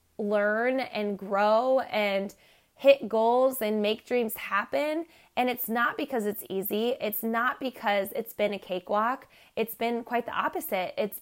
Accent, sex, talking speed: American, female, 155 wpm